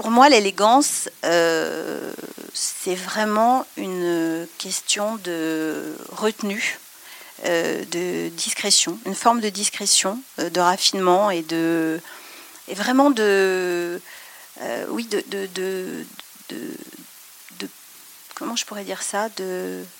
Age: 40-59